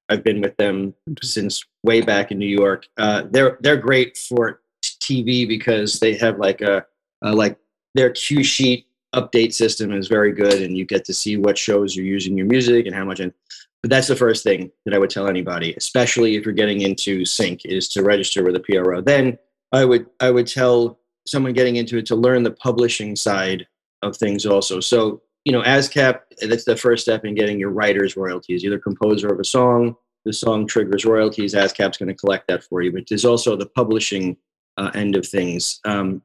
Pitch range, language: 100-120 Hz, English